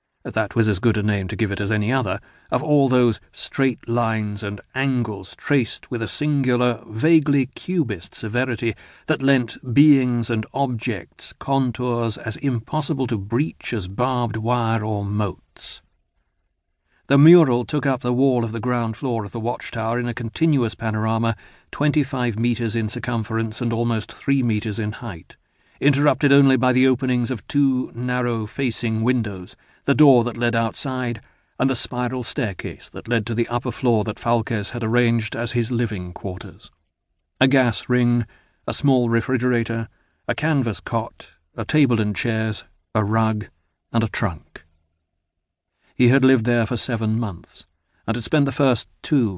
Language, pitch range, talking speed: English, 105-125 Hz, 160 wpm